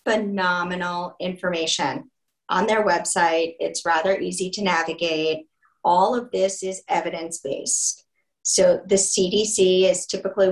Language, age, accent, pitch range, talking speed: English, 30-49, American, 165-185 Hz, 120 wpm